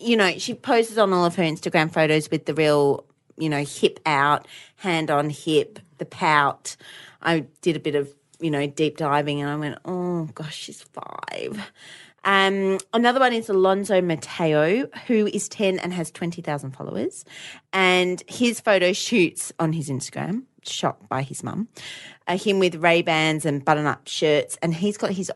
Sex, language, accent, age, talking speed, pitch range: female, English, Australian, 30-49, 170 wpm, 155-205 Hz